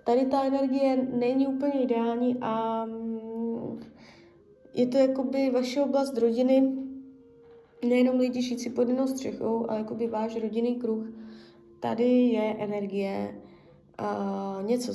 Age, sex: 20-39, female